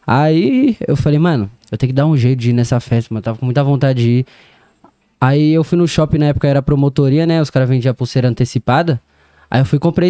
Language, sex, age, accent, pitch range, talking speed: Portuguese, male, 20-39, Brazilian, 130-170 Hz, 250 wpm